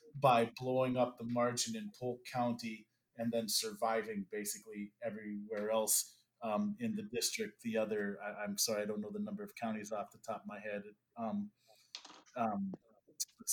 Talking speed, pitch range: 175 wpm, 110-155 Hz